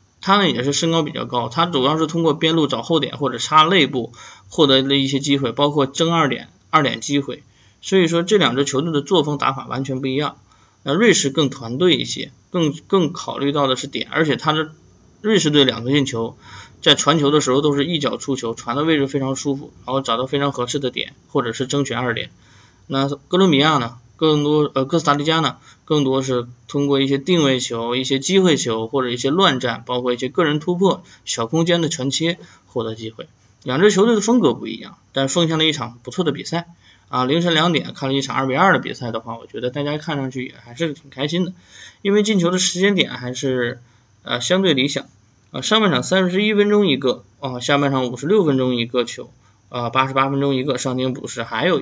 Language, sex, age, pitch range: Chinese, male, 20-39, 125-160 Hz